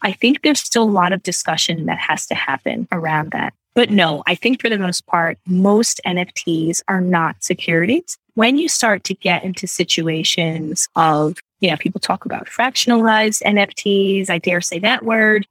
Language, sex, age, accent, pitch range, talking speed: English, female, 20-39, American, 175-225 Hz, 180 wpm